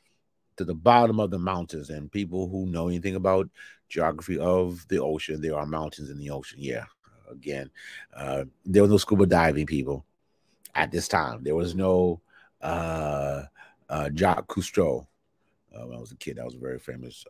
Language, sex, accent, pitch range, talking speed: English, male, American, 85-125 Hz, 180 wpm